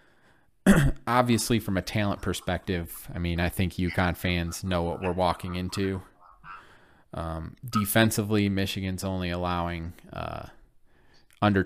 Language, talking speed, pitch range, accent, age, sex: English, 120 wpm, 90-105 Hz, American, 20-39, male